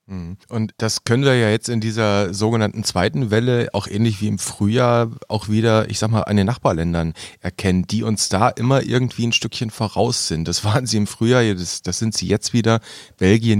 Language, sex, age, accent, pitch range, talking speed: German, male, 30-49, German, 100-120 Hz, 205 wpm